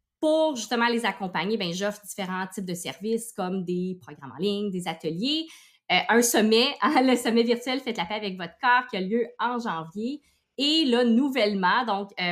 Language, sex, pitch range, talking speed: French, female, 190-255 Hz, 195 wpm